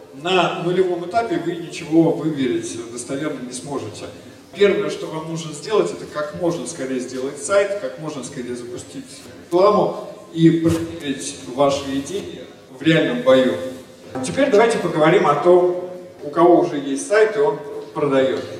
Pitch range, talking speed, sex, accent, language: 135-195 Hz, 145 wpm, male, native, Russian